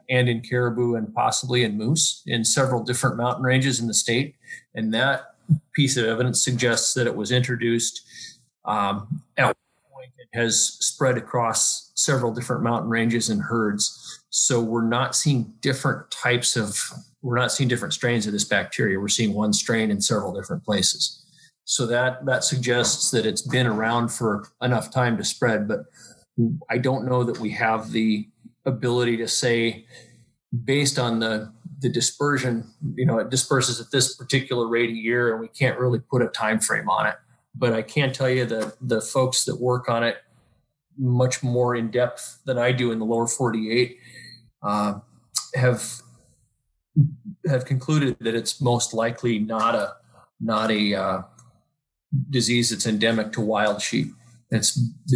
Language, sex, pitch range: English, male, 115-130 Hz